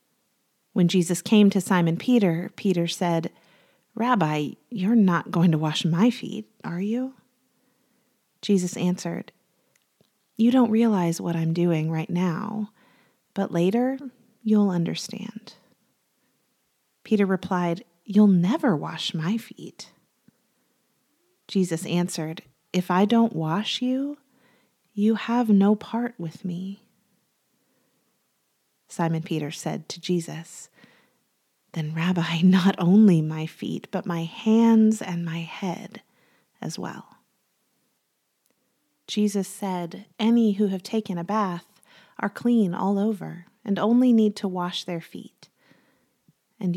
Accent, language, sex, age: American, English, female, 30-49